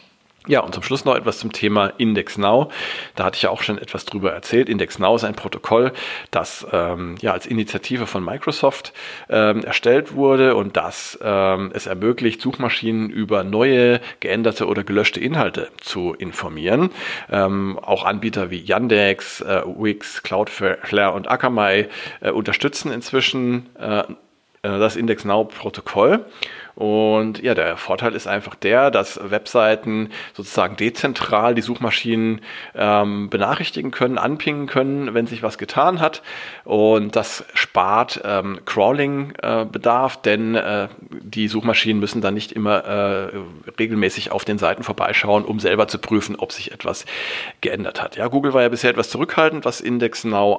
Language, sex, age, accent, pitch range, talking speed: German, male, 40-59, German, 105-120 Hz, 145 wpm